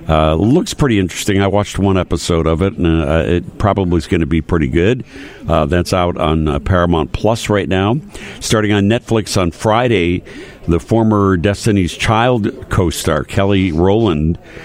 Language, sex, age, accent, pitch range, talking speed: English, male, 60-79, American, 85-100 Hz, 170 wpm